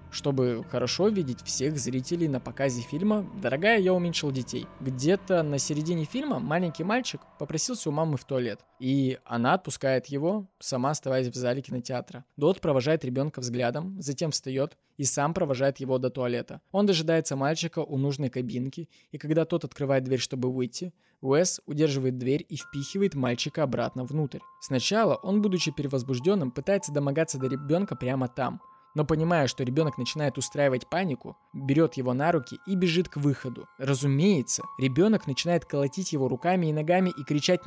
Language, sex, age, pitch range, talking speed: Russian, male, 20-39, 130-175 Hz, 160 wpm